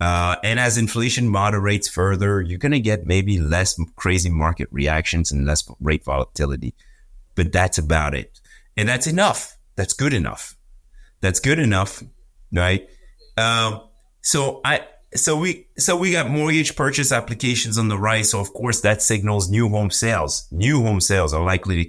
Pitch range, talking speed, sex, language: 90-110 Hz, 165 wpm, male, English